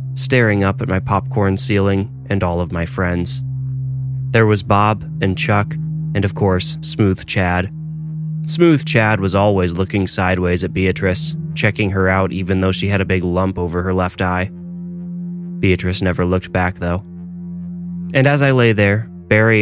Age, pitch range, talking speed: 20-39, 95-130 Hz, 165 wpm